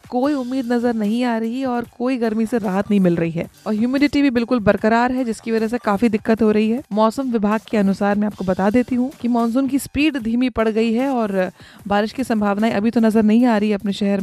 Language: Hindi